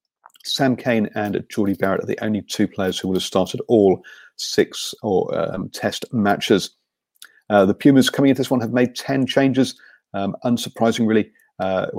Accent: British